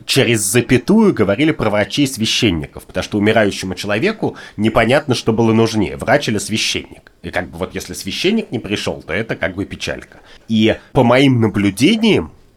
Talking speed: 165 wpm